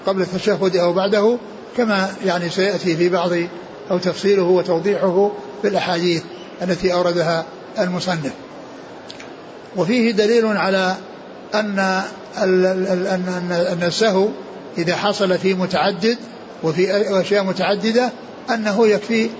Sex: male